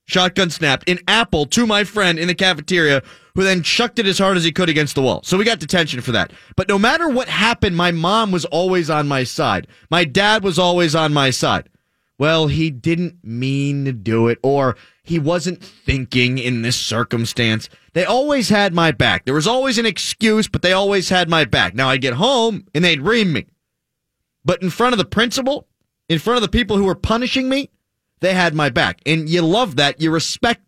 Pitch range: 140-215 Hz